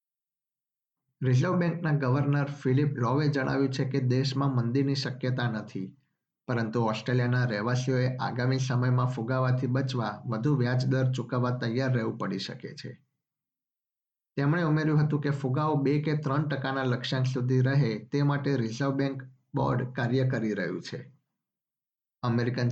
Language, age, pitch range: Gujarati, 50-69, 125-140 Hz